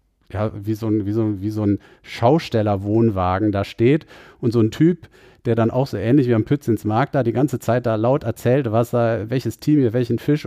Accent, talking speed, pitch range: German, 220 wpm, 105-125 Hz